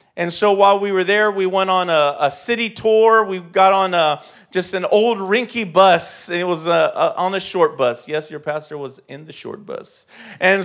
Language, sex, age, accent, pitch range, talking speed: English, male, 40-59, American, 170-210 Hz, 225 wpm